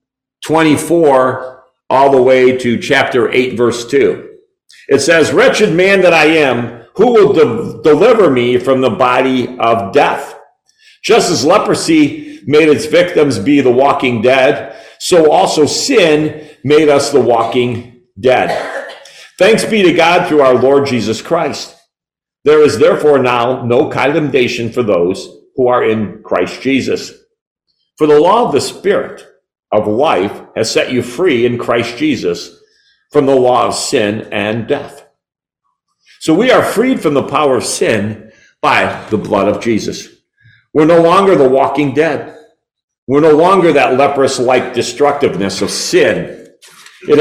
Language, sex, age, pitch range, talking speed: English, male, 50-69, 120-160 Hz, 145 wpm